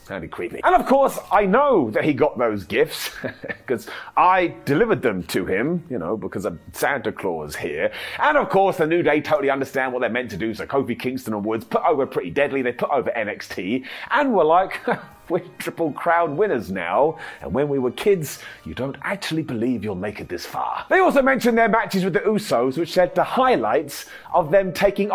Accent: British